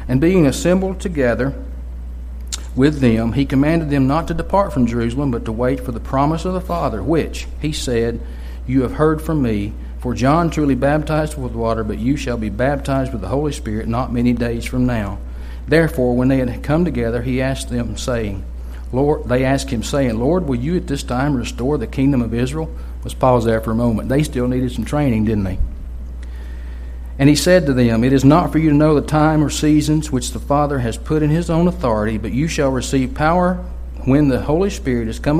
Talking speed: 215 wpm